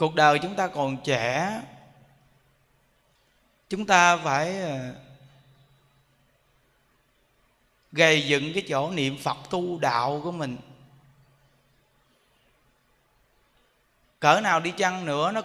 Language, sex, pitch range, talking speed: Vietnamese, male, 140-210 Hz, 95 wpm